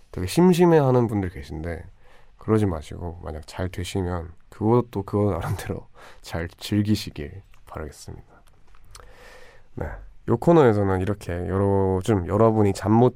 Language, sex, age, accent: Korean, male, 20-39, native